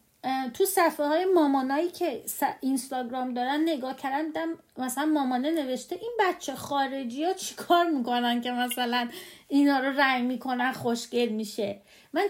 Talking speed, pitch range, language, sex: 135 wpm, 250-330 Hz, Persian, female